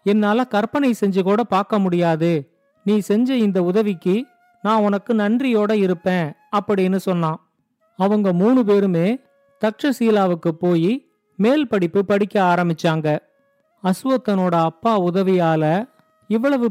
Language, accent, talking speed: Tamil, native, 105 wpm